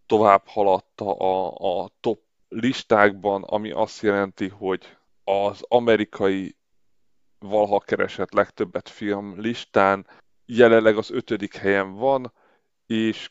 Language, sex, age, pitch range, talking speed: Hungarian, male, 30-49, 100-115 Hz, 105 wpm